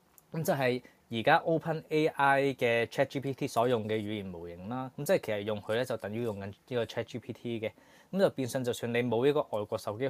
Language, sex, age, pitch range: Chinese, male, 20-39, 110-145 Hz